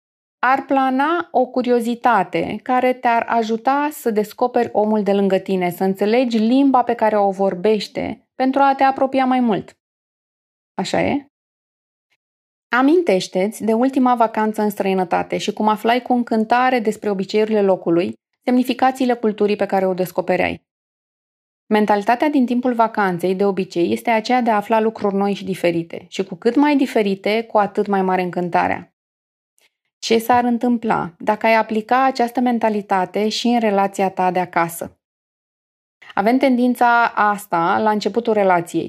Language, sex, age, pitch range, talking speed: Romanian, female, 20-39, 190-240 Hz, 145 wpm